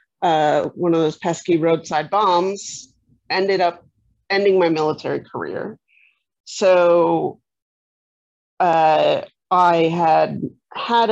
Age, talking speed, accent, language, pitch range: 30-49, 95 wpm, American, English, 155-190 Hz